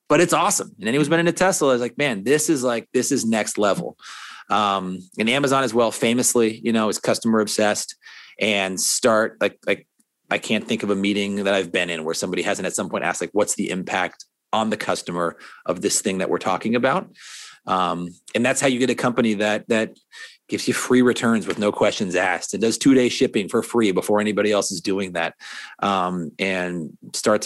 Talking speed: 215 wpm